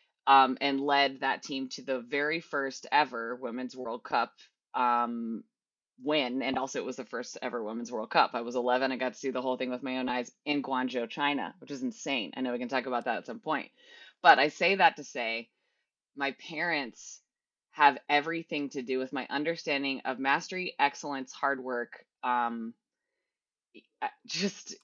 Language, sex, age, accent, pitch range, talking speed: English, female, 20-39, American, 125-145 Hz, 185 wpm